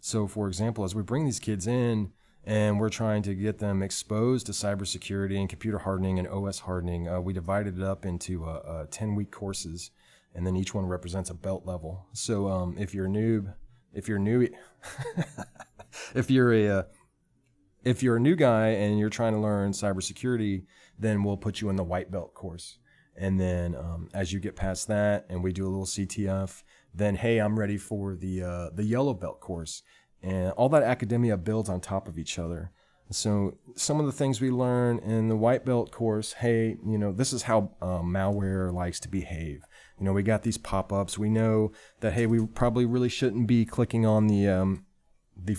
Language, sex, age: English, male, 30-49